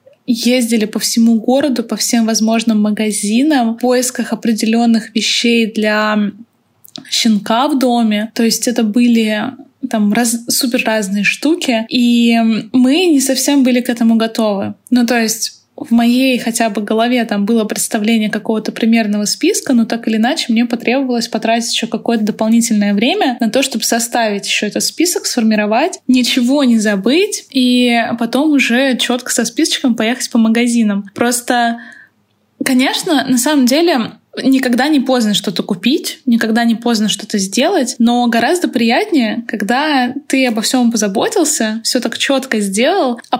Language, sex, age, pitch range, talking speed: Russian, female, 20-39, 225-260 Hz, 145 wpm